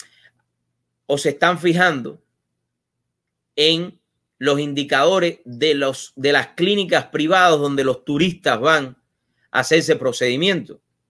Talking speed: 110 wpm